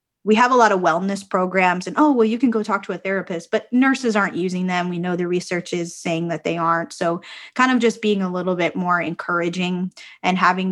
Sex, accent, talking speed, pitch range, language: female, American, 240 wpm, 185-230 Hz, English